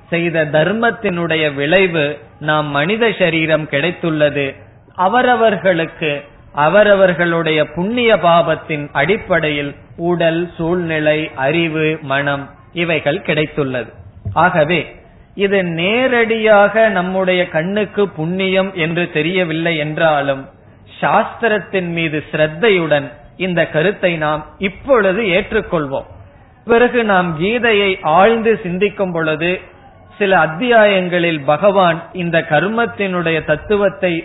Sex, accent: male, native